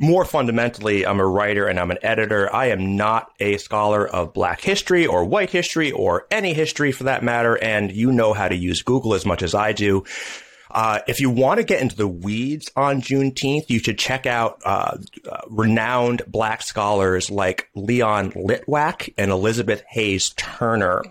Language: English